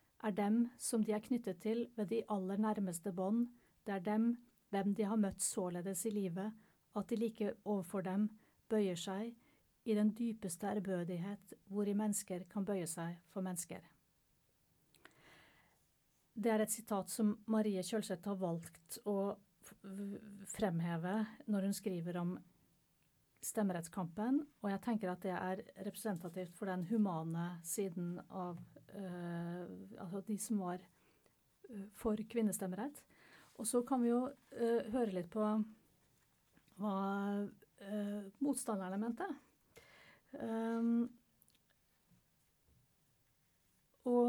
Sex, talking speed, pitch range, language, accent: female, 125 wpm, 190-230 Hz, English, Swedish